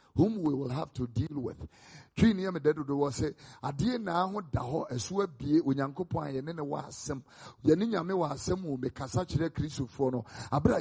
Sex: male